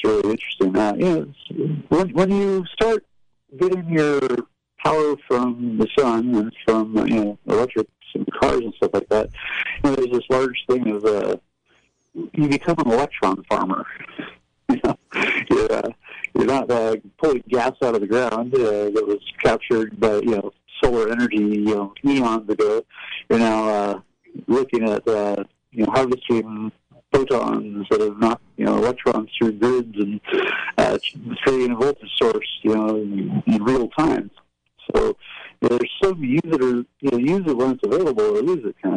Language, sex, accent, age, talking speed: English, male, American, 50-69, 165 wpm